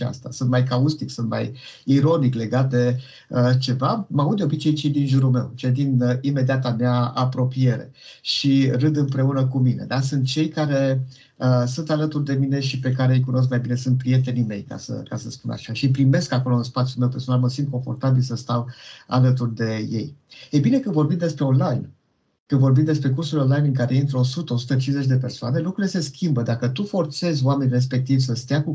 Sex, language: male, Romanian